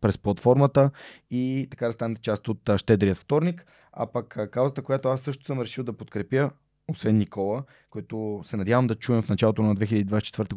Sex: male